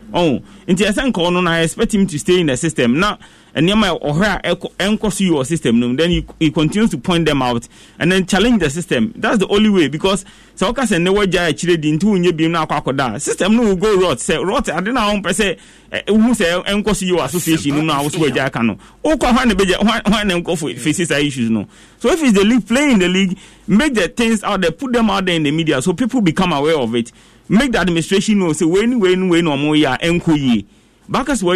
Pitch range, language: 125-195 Hz, English